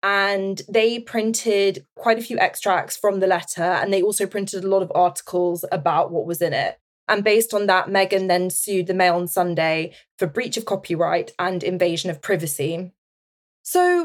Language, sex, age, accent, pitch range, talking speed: English, female, 20-39, British, 180-220 Hz, 185 wpm